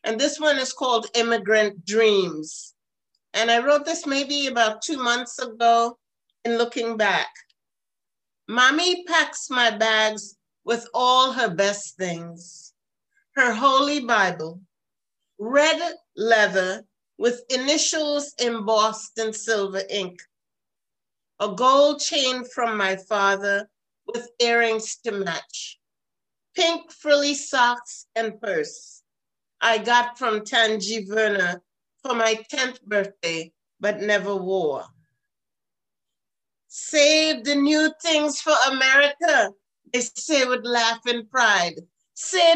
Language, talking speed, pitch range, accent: English, 110 wpm, 215-285 Hz, American